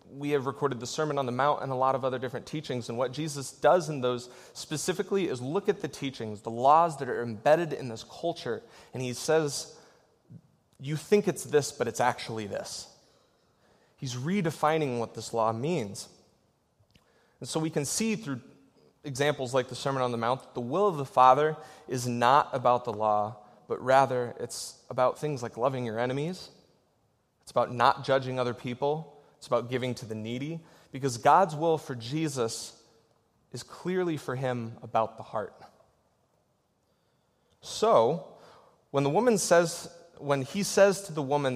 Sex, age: male, 30-49